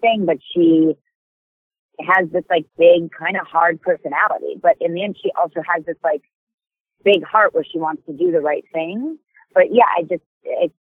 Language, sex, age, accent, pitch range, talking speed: English, female, 30-49, American, 150-185 Hz, 195 wpm